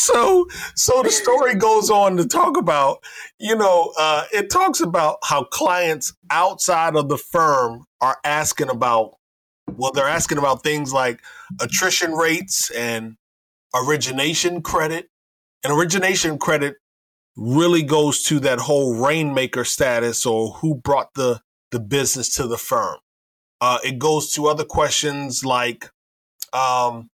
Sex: male